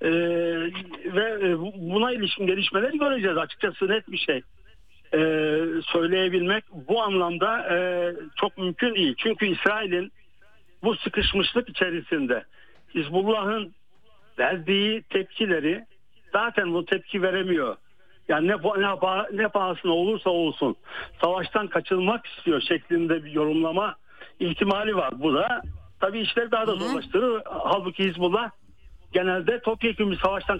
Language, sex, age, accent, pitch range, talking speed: Turkish, male, 60-79, native, 170-220 Hz, 110 wpm